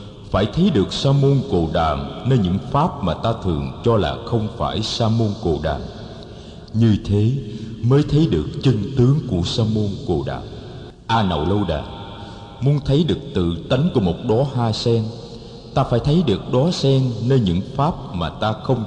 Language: Vietnamese